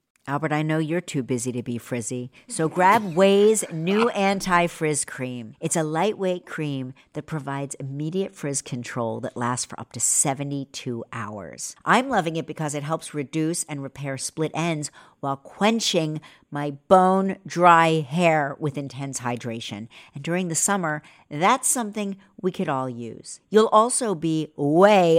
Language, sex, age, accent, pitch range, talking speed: English, female, 50-69, American, 130-180 Hz, 150 wpm